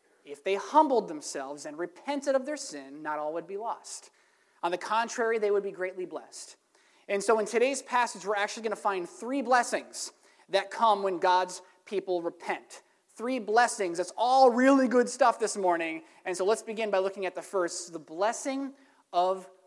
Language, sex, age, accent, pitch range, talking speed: English, male, 20-39, American, 185-245 Hz, 185 wpm